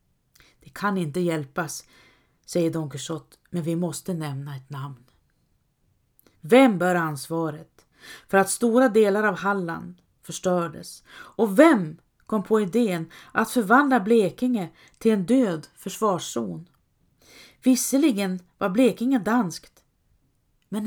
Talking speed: 110 wpm